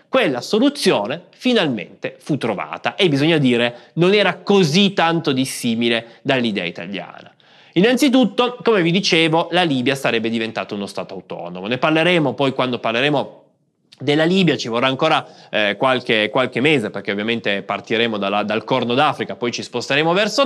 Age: 20-39